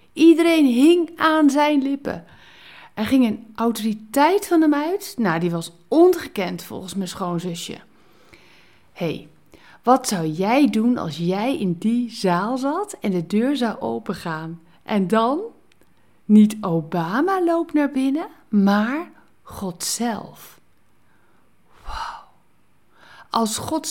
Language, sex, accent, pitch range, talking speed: Dutch, female, Dutch, 180-260 Hz, 120 wpm